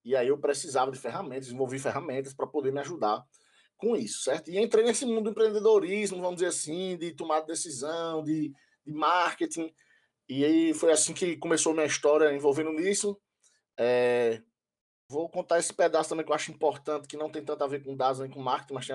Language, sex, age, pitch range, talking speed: Portuguese, male, 20-39, 140-185 Hz, 200 wpm